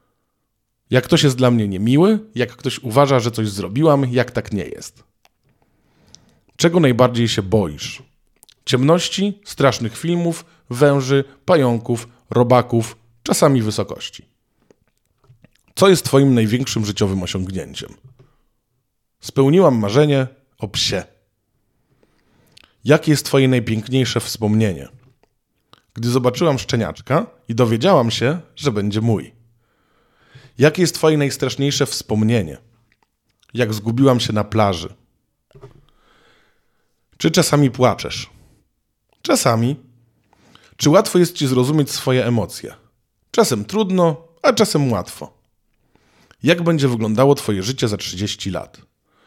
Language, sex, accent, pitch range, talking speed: Polish, male, native, 110-140 Hz, 105 wpm